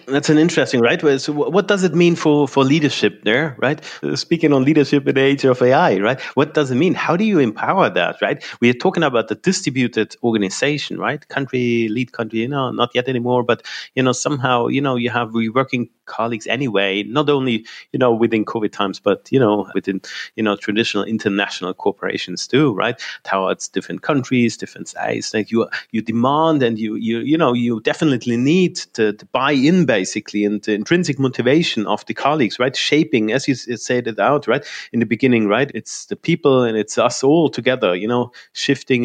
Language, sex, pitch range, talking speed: English, male, 110-140 Hz, 200 wpm